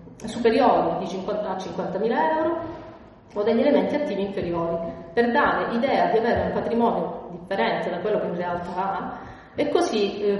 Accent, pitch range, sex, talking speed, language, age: native, 175-230 Hz, female, 155 wpm, Italian, 30-49